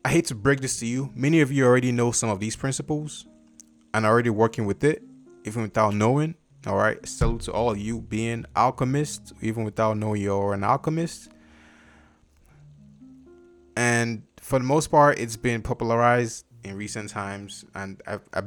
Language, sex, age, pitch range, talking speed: English, male, 20-39, 95-120 Hz, 175 wpm